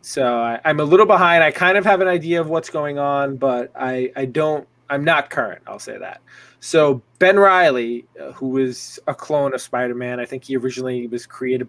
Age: 20-39